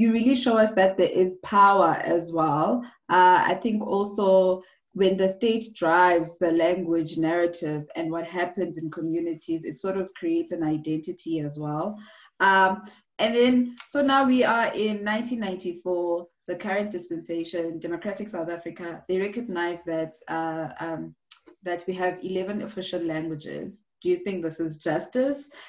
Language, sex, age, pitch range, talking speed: English, female, 20-39, 165-205 Hz, 155 wpm